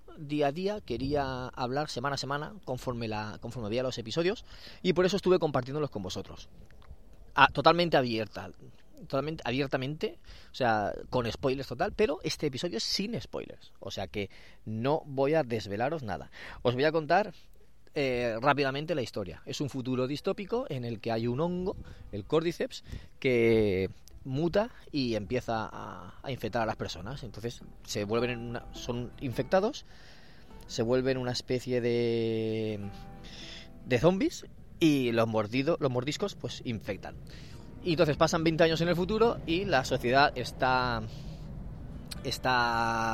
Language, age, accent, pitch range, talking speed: Spanish, 30-49, Spanish, 110-150 Hz, 150 wpm